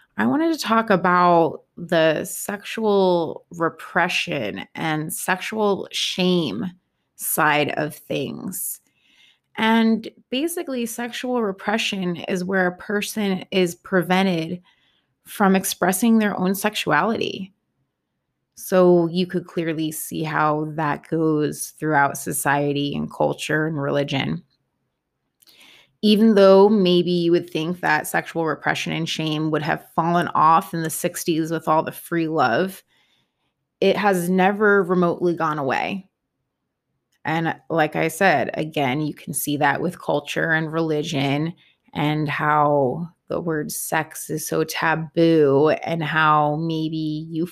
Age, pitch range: 20-39, 155-190 Hz